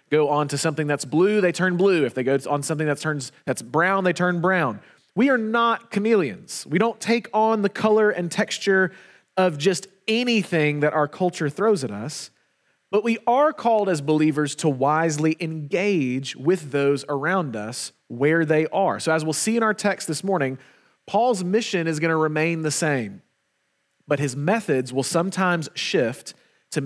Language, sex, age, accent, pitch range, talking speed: English, male, 30-49, American, 145-190 Hz, 180 wpm